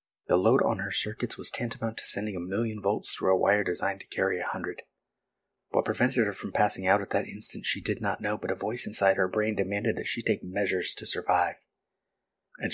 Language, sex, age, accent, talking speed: English, male, 30-49, American, 220 wpm